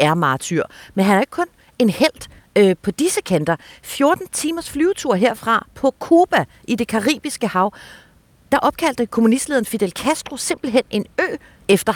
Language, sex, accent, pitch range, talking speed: Danish, female, native, 180-245 Hz, 160 wpm